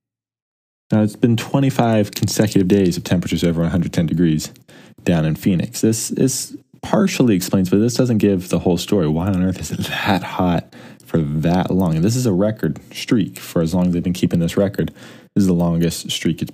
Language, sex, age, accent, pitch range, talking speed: English, male, 20-39, American, 85-100 Hz, 205 wpm